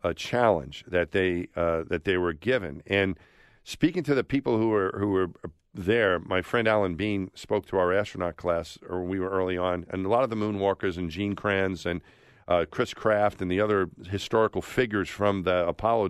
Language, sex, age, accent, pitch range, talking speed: English, male, 50-69, American, 85-105 Hz, 200 wpm